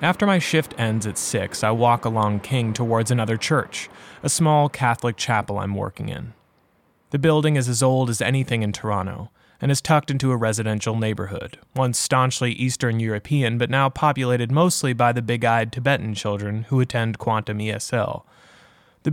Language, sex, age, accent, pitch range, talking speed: English, male, 20-39, American, 110-130 Hz, 170 wpm